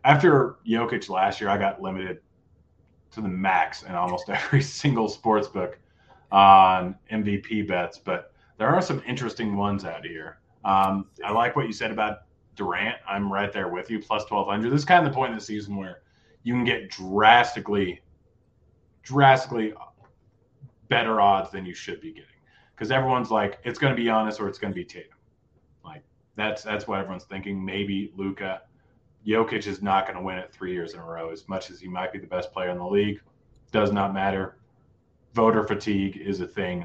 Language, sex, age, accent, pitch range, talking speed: English, male, 30-49, American, 95-115 Hz, 190 wpm